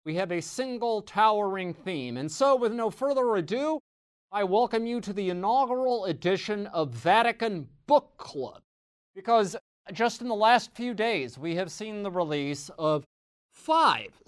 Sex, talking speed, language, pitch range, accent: male, 155 wpm, English, 145-225 Hz, American